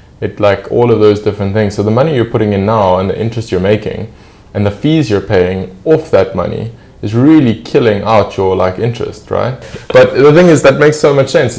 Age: 20-39